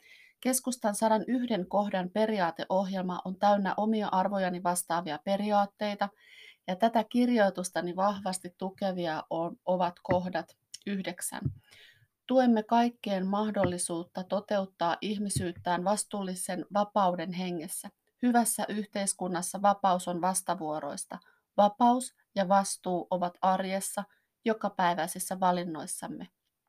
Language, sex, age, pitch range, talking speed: Finnish, female, 30-49, 185-220 Hz, 85 wpm